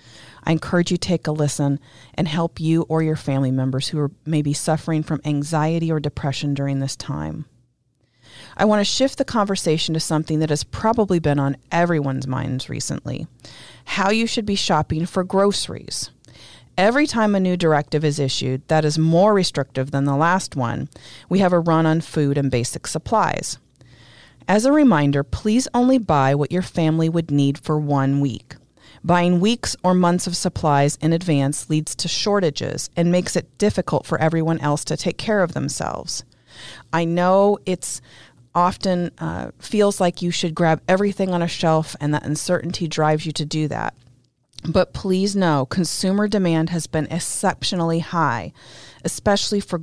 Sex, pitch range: female, 140-180 Hz